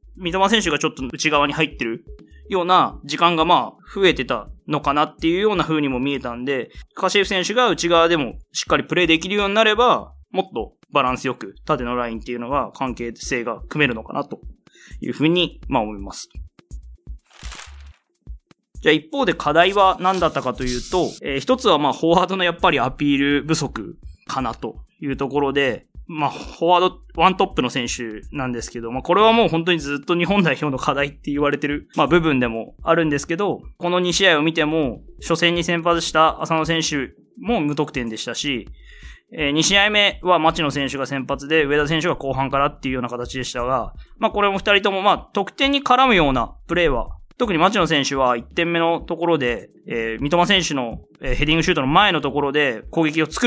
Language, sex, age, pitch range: Japanese, male, 20-39, 135-180 Hz